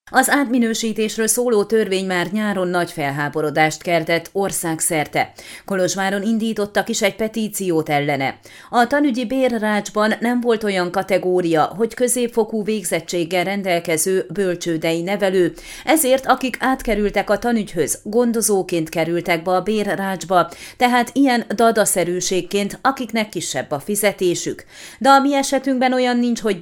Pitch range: 175-225 Hz